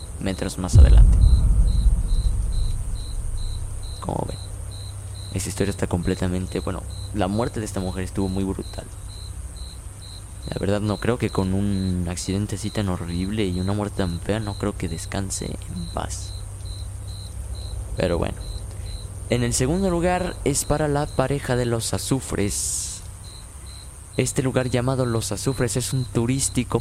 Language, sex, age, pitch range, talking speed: Spanish, male, 20-39, 95-115 Hz, 135 wpm